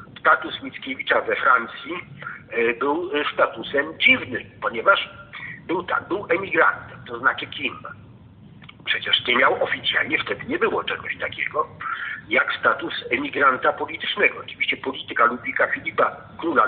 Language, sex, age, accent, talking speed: Polish, male, 50-69, native, 120 wpm